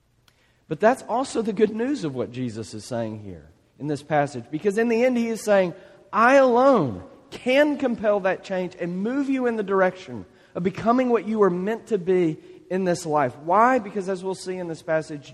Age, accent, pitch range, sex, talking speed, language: 40-59, American, 130-190 Hz, male, 205 wpm, English